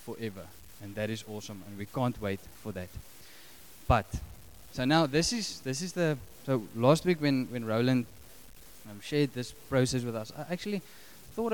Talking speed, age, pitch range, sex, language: 175 wpm, 20-39, 110-145 Hz, male, English